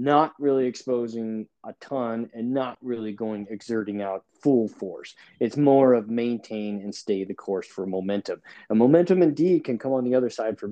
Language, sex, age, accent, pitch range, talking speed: English, male, 30-49, American, 115-155 Hz, 190 wpm